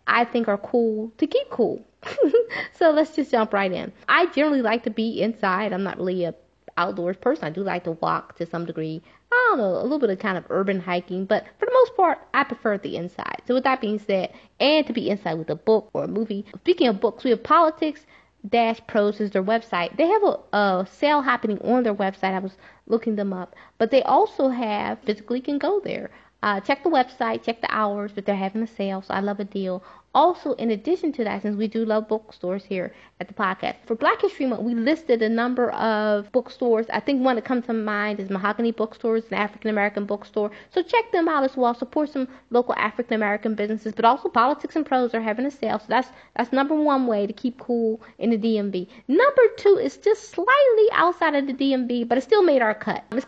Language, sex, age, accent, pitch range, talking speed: English, female, 20-39, American, 205-270 Hz, 230 wpm